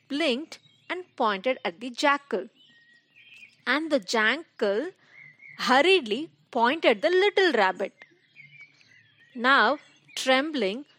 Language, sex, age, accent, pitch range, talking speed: English, female, 30-49, Indian, 205-305 Hz, 85 wpm